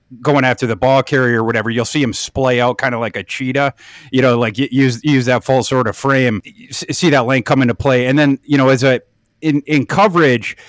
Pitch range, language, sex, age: 115-140 Hz, English, male, 30-49